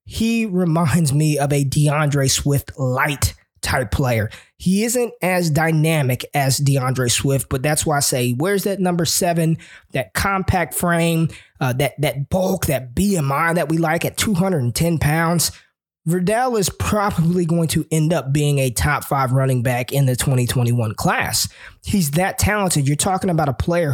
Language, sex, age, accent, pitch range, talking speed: English, male, 20-39, American, 140-180 Hz, 165 wpm